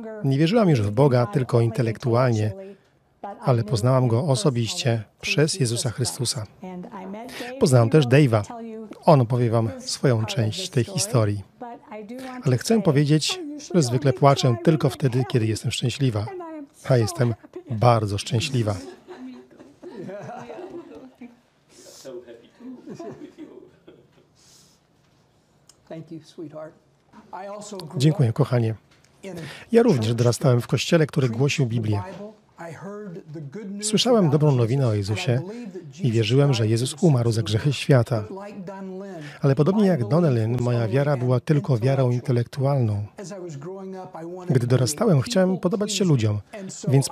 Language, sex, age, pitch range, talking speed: Polish, male, 40-59, 120-185 Hz, 100 wpm